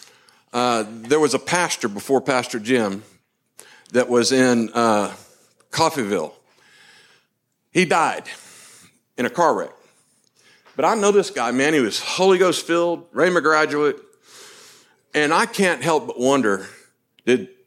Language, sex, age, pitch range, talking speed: English, male, 50-69, 120-190 Hz, 130 wpm